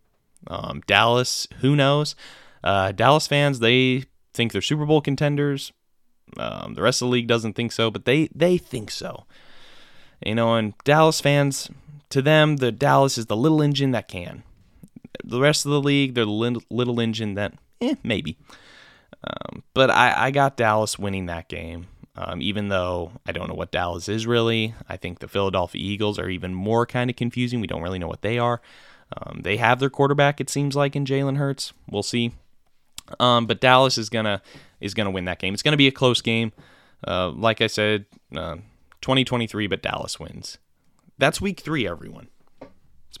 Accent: American